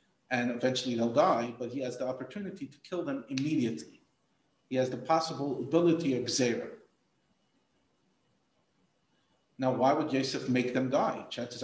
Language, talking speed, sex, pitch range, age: English, 145 wpm, male, 120-155 Hz, 50-69